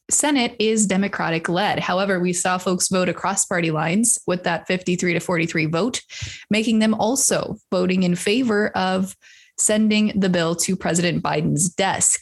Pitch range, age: 180-220 Hz, 20-39